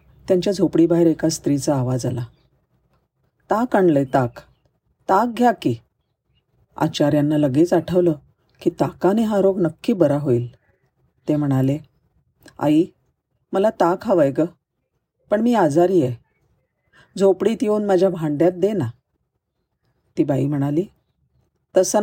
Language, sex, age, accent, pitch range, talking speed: Marathi, female, 40-59, native, 130-180 Hz, 115 wpm